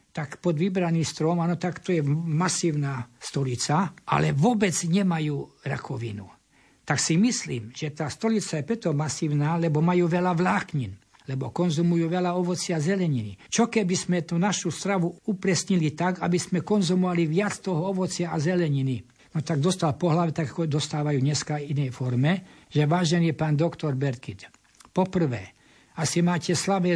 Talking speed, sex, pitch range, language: 150 wpm, male, 140-175 Hz, Slovak